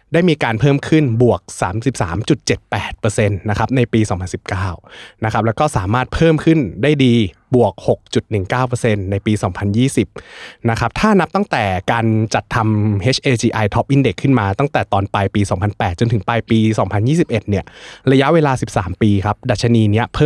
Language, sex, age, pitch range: Thai, male, 20-39, 105-125 Hz